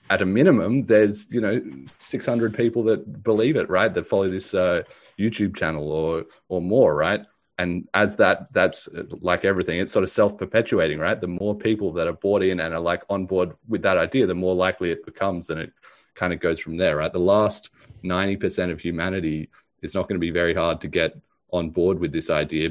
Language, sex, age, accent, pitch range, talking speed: English, male, 30-49, Australian, 80-95 Hz, 210 wpm